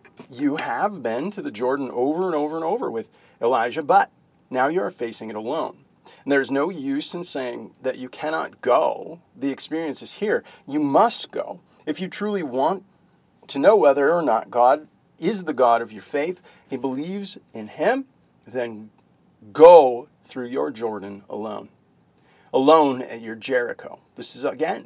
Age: 40-59